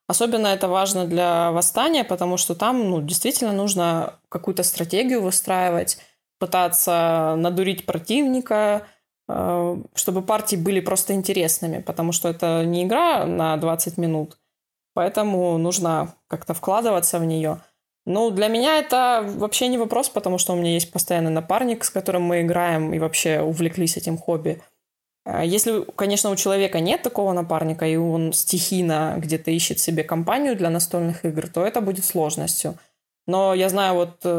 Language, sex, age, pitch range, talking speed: Russian, female, 20-39, 165-195 Hz, 145 wpm